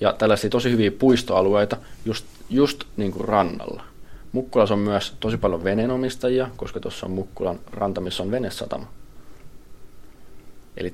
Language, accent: Finnish, native